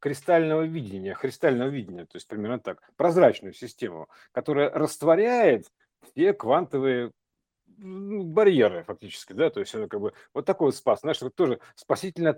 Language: Russian